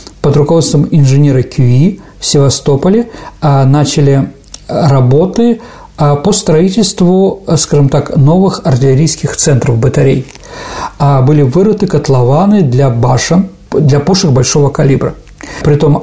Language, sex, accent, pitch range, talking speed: Russian, male, native, 135-175 Hz, 110 wpm